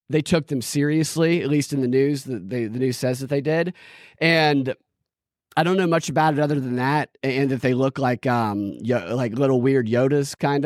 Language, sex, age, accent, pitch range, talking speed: English, male, 30-49, American, 120-155 Hz, 220 wpm